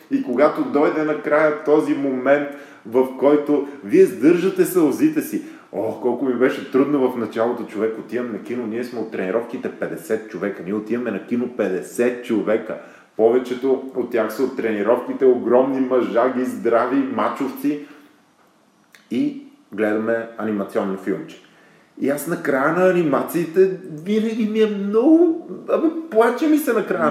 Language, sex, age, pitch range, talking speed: Bulgarian, male, 30-49, 110-185 Hz, 145 wpm